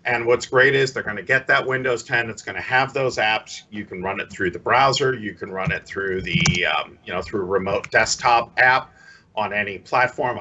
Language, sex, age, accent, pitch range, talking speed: English, male, 50-69, American, 115-145 Hz, 230 wpm